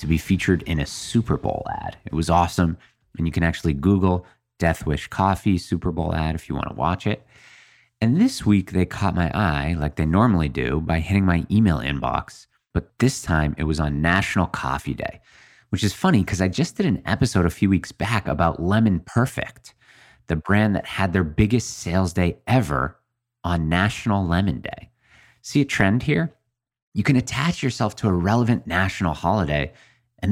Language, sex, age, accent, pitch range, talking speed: English, male, 30-49, American, 85-115 Hz, 190 wpm